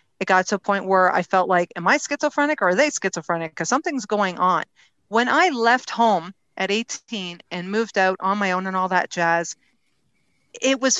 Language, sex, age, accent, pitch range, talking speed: English, female, 40-59, American, 180-235 Hz, 205 wpm